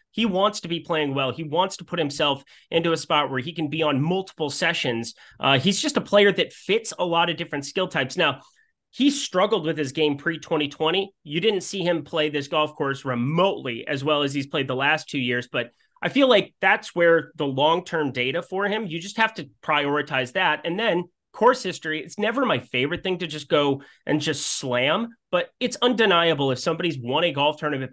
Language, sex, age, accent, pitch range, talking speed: English, male, 30-49, American, 140-180 Hz, 215 wpm